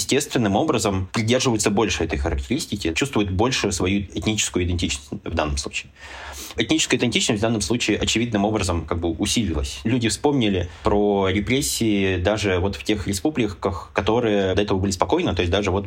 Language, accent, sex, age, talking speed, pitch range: Russian, native, male, 20-39, 160 wpm, 95-110 Hz